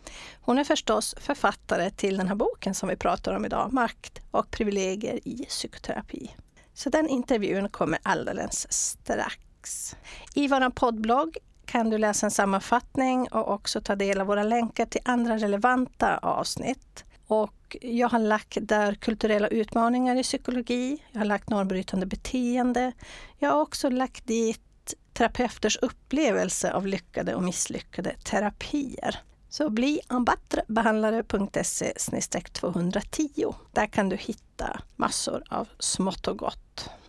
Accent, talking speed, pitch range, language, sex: Swedish, 130 wpm, 210-250 Hz, English, female